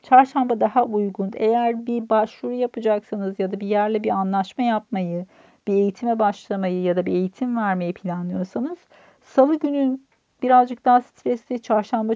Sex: female